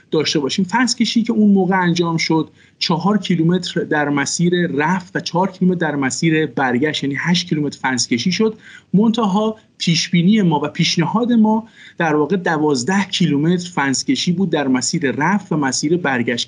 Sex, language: male, Persian